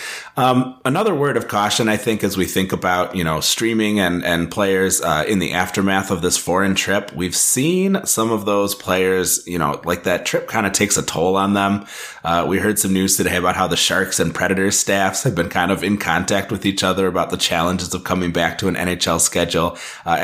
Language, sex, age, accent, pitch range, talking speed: English, male, 30-49, American, 85-100 Hz, 225 wpm